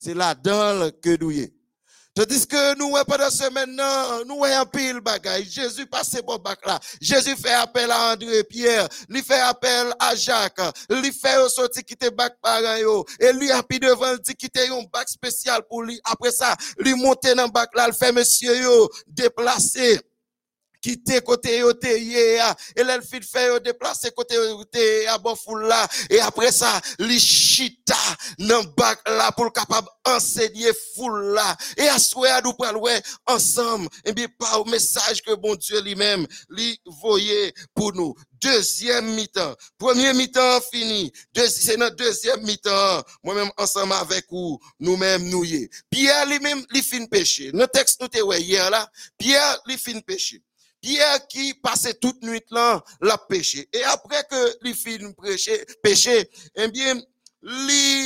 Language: French